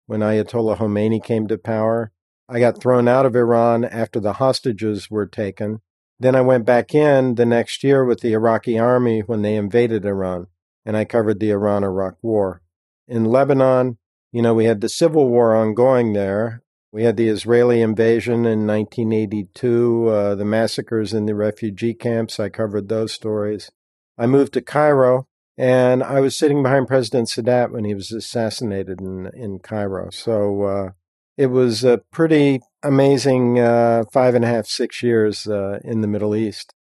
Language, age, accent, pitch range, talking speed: English, 50-69, American, 105-125 Hz, 170 wpm